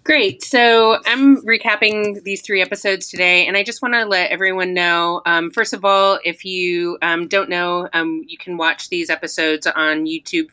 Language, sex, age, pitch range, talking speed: English, female, 30-49, 155-195 Hz, 190 wpm